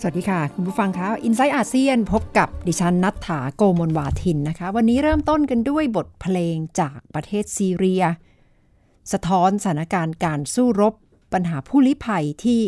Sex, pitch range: female, 170-230 Hz